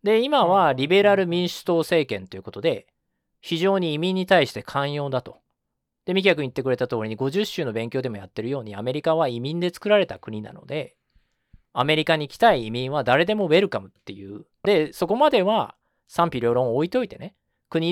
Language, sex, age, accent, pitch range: Japanese, male, 40-59, native, 110-180 Hz